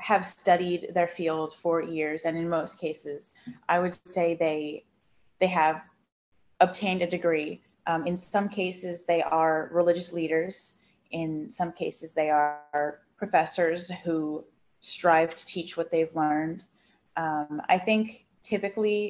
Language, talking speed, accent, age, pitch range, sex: English, 140 wpm, American, 20-39, 155-180 Hz, female